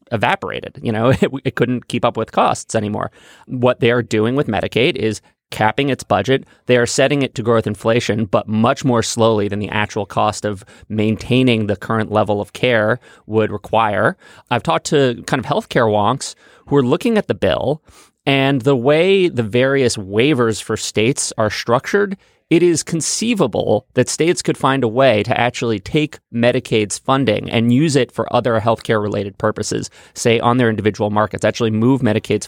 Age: 30-49